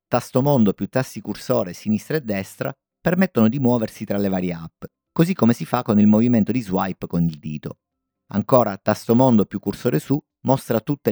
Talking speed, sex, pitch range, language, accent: 190 wpm, male, 100-140 Hz, Italian, native